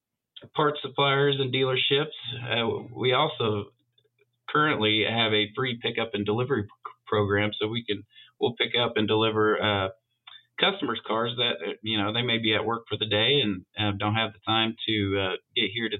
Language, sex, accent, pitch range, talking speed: English, male, American, 105-120 Hz, 185 wpm